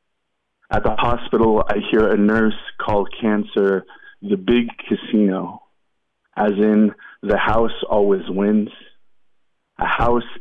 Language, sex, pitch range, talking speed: English, male, 100-110 Hz, 115 wpm